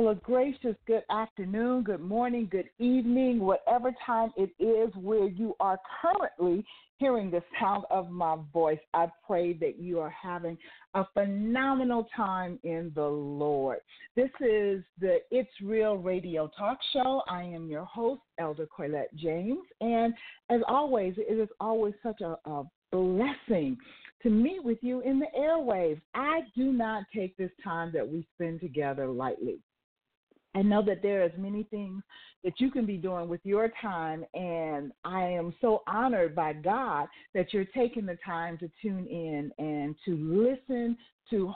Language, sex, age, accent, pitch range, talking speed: English, female, 50-69, American, 170-235 Hz, 160 wpm